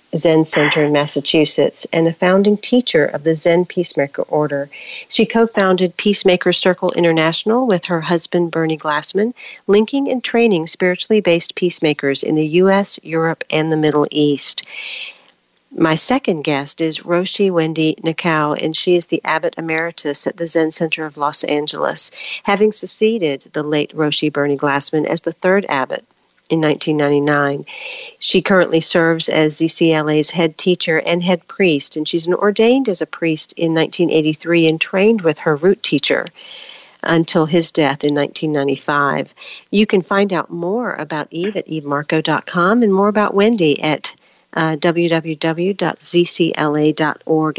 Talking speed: 145 wpm